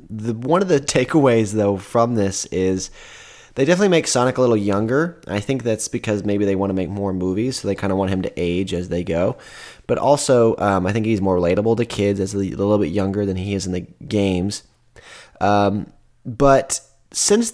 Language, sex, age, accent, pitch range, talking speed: English, male, 20-39, American, 100-125 Hz, 210 wpm